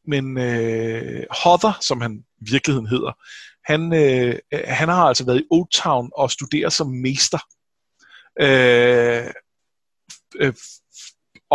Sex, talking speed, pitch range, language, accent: male, 110 wpm, 120-150 Hz, Danish, native